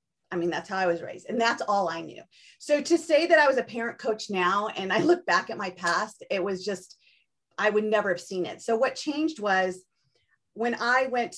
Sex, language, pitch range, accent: female, English, 180-210 Hz, American